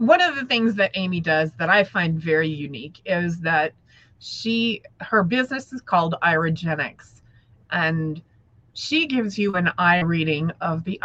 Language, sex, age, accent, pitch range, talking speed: English, female, 30-49, American, 150-210 Hz, 155 wpm